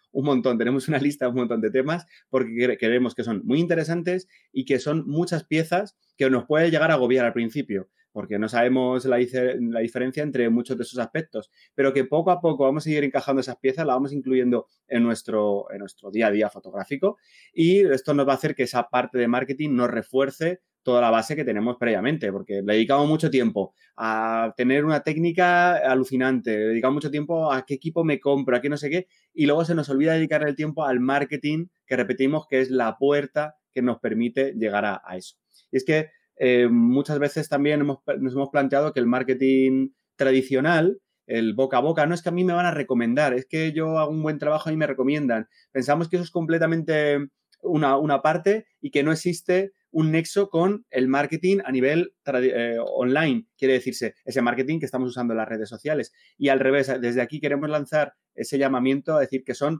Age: 30-49